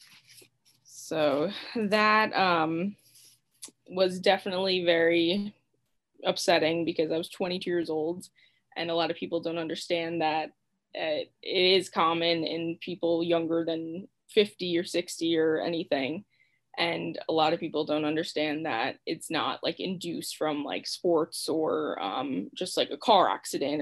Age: 20-39